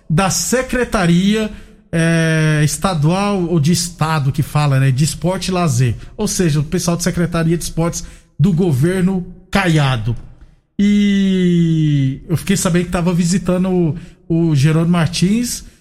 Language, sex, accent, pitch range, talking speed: Portuguese, male, Brazilian, 155-190 Hz, 135 wpm